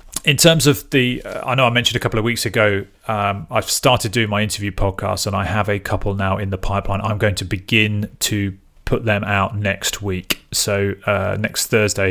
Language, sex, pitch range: English, male, 95-105 Hz